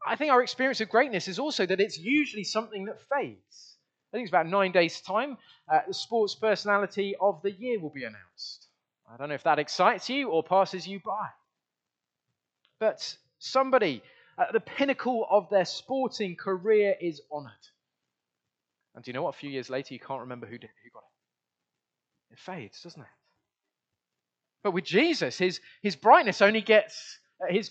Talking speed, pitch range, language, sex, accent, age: 180 wpm, 160-220 Hz, English, male, British, 20-39